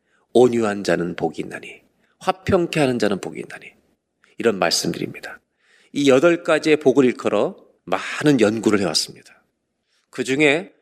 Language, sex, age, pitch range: Korean, male, 40-59, 115-175 Hz